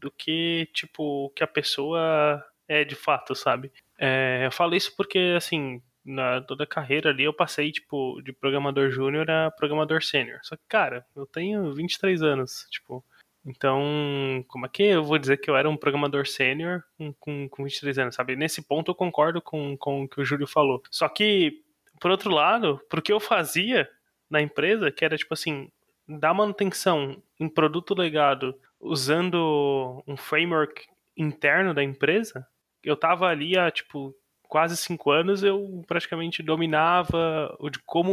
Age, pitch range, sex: 20-39, 140-170 Hz, male